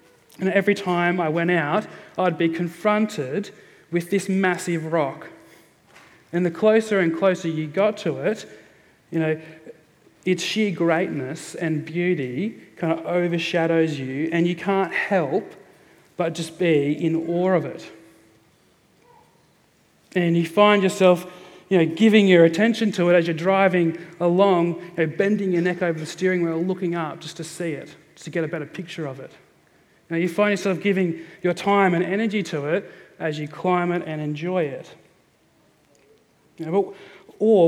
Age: 30-49